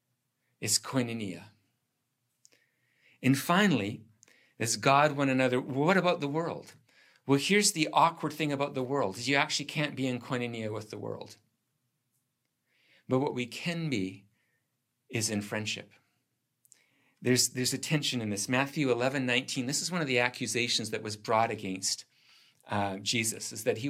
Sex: male